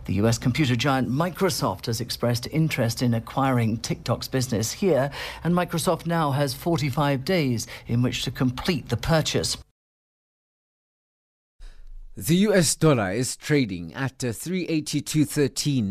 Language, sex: English, male